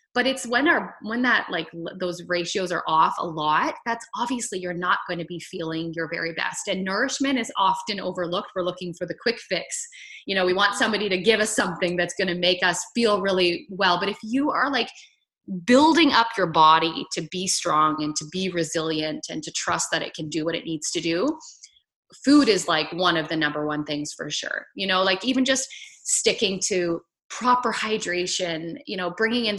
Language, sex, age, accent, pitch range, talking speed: English, female, 20-39, American, 170-210 Hz, 205 wpm